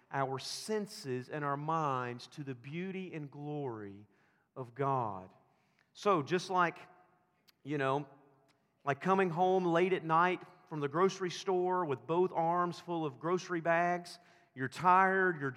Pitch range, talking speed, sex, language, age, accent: 140-180 Hz, 145 wpm, male, English, 40-59, American